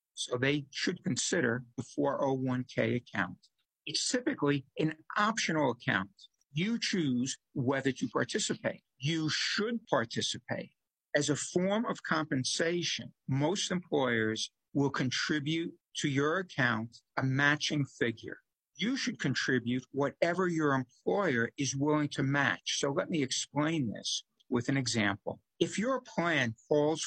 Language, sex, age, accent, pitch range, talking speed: English, male, 60-79, American, 125-185 Hz, 125 wpm